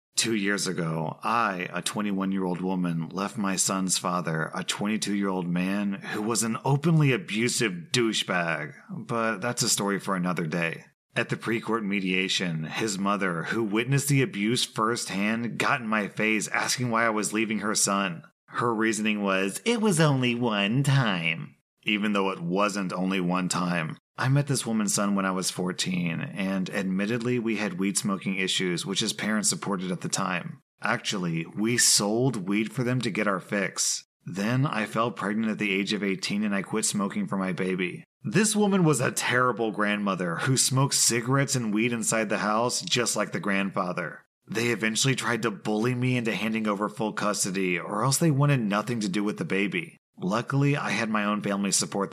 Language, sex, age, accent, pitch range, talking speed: English, male, 30-49, American, 95-120 Hz, 185 wpm